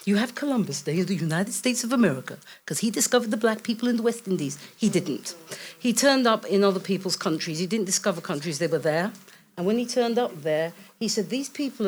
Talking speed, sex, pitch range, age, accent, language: 230 wpm, female, 180-245 Hz, 50-69, British, English